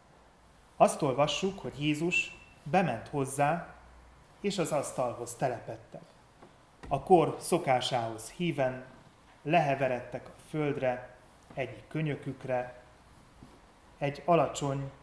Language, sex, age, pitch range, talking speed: Hungarian, male, 30-49, 125-150 Hz, 85 wpm